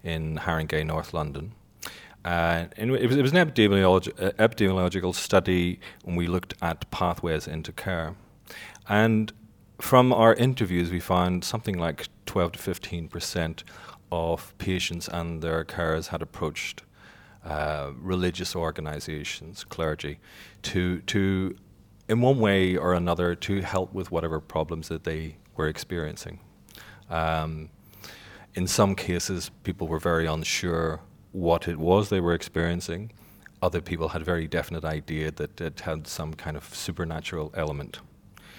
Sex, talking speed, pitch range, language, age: male, 130 wpm, 80-100 Hz, English, 40-59